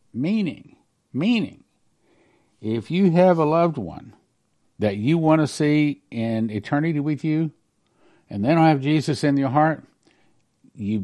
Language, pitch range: English, 110-145 Hz